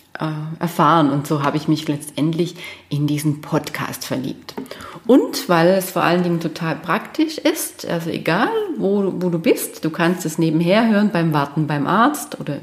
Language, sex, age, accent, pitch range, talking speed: German, female, 30-49, German, 160-205 Hz, 170 wpm